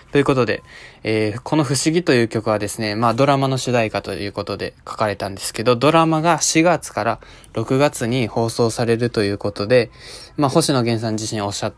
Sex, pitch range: male, 105-135 Hz